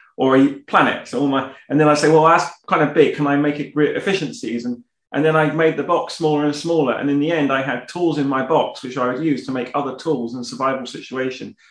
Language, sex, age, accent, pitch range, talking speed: English, male, 30-49, British, 130-170 Hz, 250 wpm